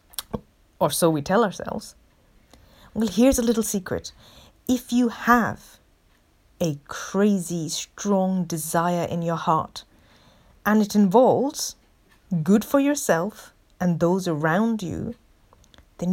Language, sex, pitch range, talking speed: English, female, 165-215 Hz, 115 wpm